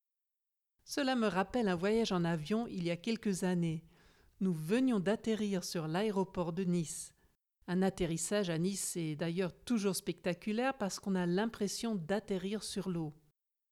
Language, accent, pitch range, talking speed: French, French, 175-220 Hz, 150 wpm